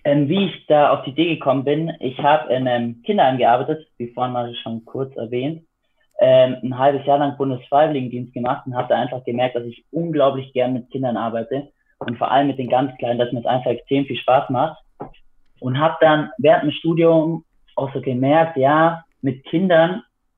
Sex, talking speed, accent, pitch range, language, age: male, 190 wpm, German, 125-155 Hz, German, 20-39